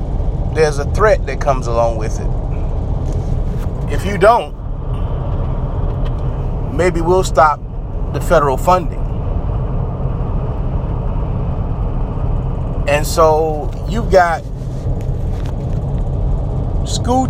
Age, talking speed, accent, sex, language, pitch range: 30-49, 75 wpm, American, male, English, 120-160 Hz